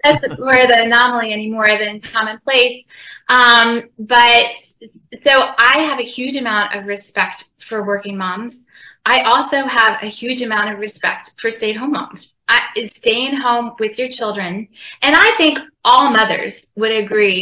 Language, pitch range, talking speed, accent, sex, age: English, 210-255 Hz, 160 wpm, American, female, 20-39